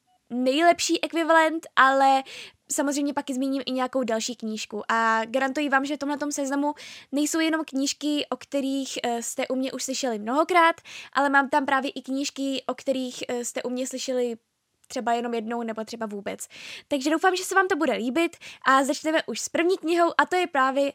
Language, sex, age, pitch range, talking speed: Czech, female, 10-29, 245-300 Hz, 185 wpm